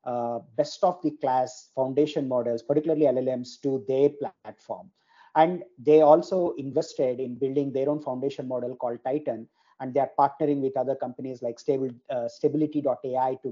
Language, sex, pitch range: English, male, 130-155 Hz